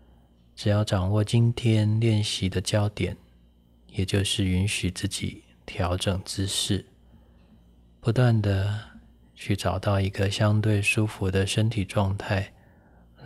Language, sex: Chinese, male